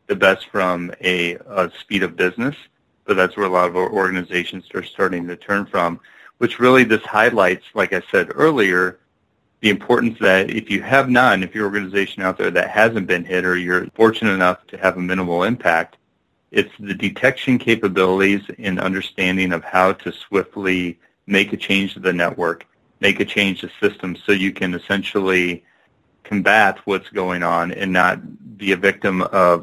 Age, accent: 40-59, American